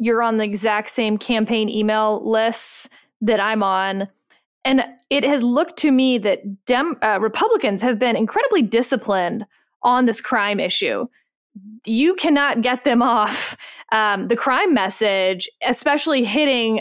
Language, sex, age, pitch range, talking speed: English, female, 20-39, 215-275 Hz, 140 wpm